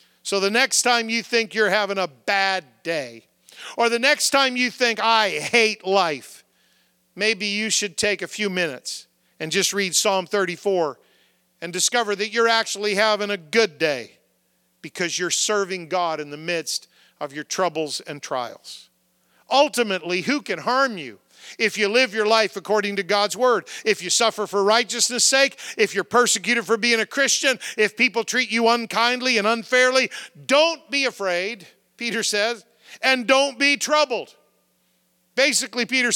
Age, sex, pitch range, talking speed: 50-69, male, 195-245 Hz, 165 wpm